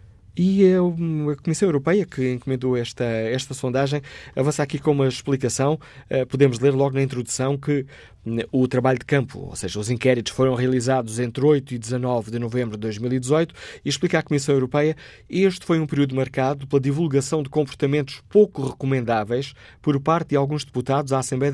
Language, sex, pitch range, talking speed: Portuguese, male, 120-145 Hz, 175 wpm